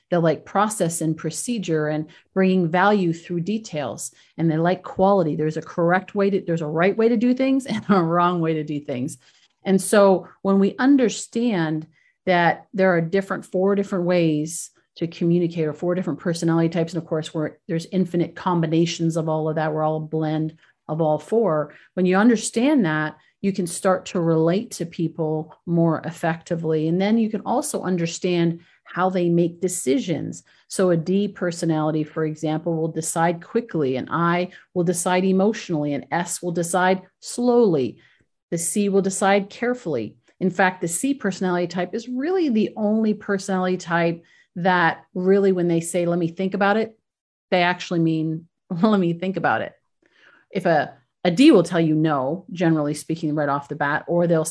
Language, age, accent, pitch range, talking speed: English, 40-59, American, 160-195 Hz, 180 wpm